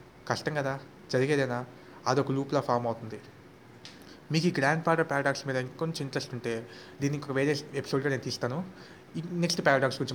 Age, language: 30-49, Telugu